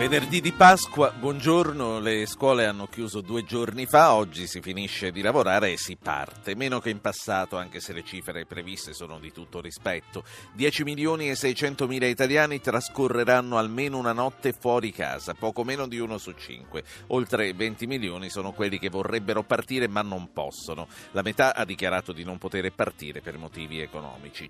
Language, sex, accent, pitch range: Italian, male, native, 90-125 Hz